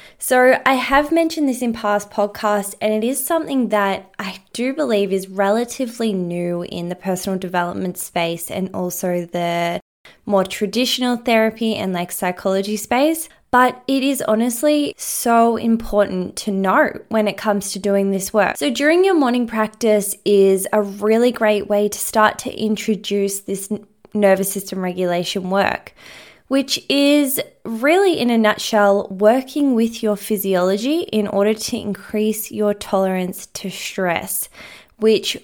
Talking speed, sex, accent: 145 wpm, female, Australian